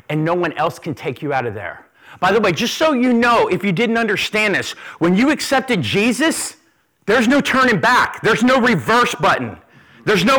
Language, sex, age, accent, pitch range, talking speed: English, male, 40-59, American, 170-250 Hz, 210 wpm